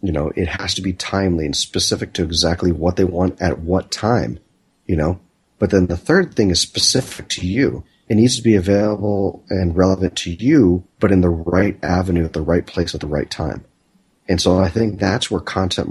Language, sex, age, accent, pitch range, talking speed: English, male, 30-49, American, 85-105 Hz, 215 wpm